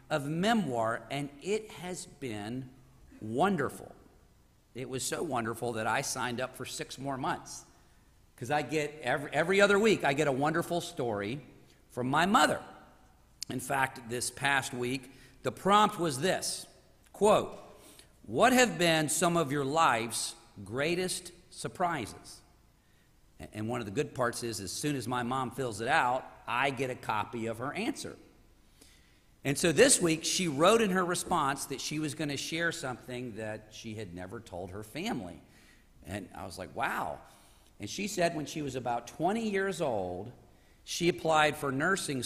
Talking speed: 165 wpm